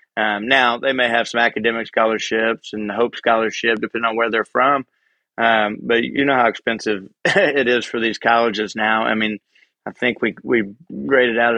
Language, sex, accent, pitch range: English, male, American, 110-120 Hz